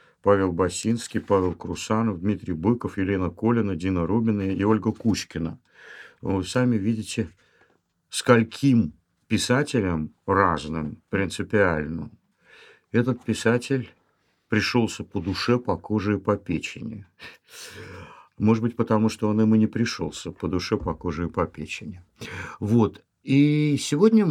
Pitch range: 95-120 Hz